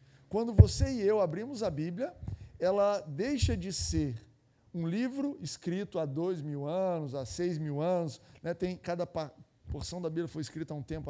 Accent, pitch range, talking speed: Brazilian, 145-200 Hz, 175 wpm